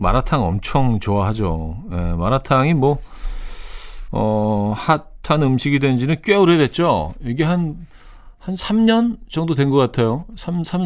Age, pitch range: 40-59, 105-155 Hz